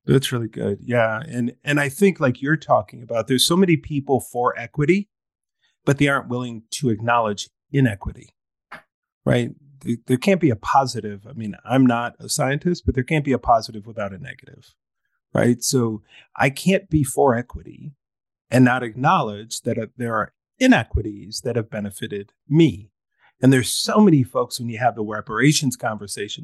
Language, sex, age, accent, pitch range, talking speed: English, male, 40-59, American, 115-150 Hz, 170 wpm